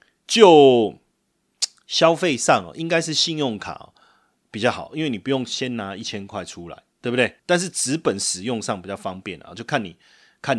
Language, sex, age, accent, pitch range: Chinese, male, 30-49, native, 115-155 Hz